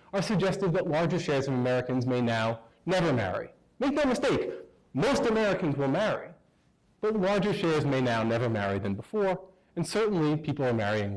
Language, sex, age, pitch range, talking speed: English, male, 30-49, 135-180 Hz, 170 wpm